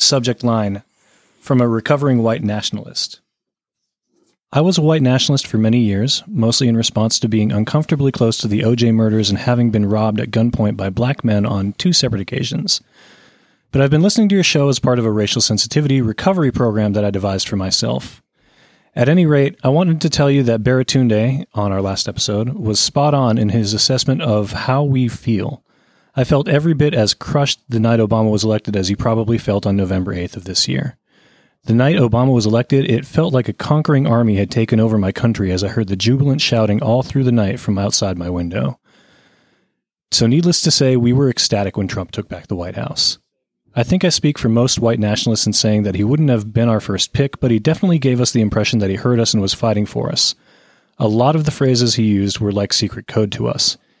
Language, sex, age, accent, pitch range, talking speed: English, male, 30-49, American, 105-130 Hz, 215 wpm